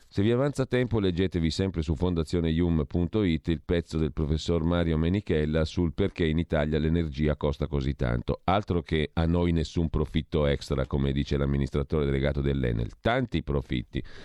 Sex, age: male, 40-59